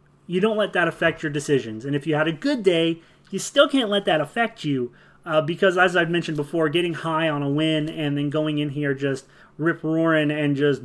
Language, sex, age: English, male, 30-49